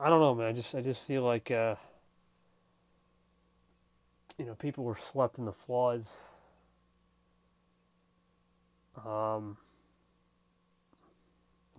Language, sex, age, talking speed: English, male, 30-49, 105 wpm